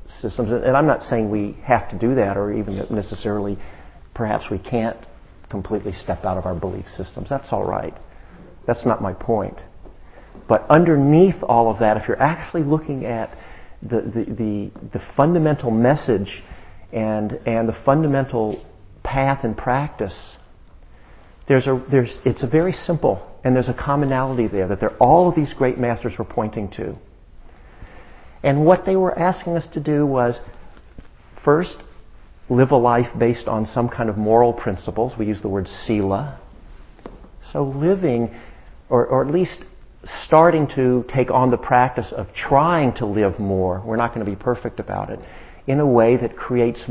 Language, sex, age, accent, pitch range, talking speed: English, male, 50-69, American, 100-130 Hz, 165 wpm